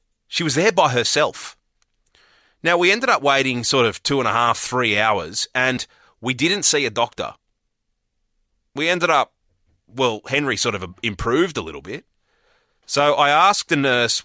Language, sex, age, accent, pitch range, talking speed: English, male, 30-49, Australian, 115-140 Hz, 170 wpm